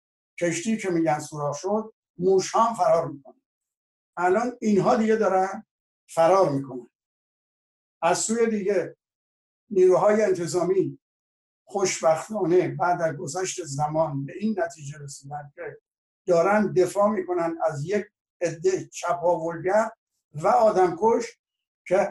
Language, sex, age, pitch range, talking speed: Persian, male, 60-79, 160-205 Hz, 110 wpm